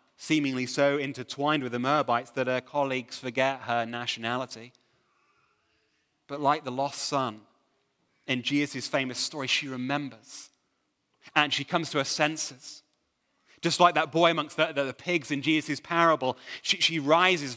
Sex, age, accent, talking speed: male, 30-49, British, 150 wpm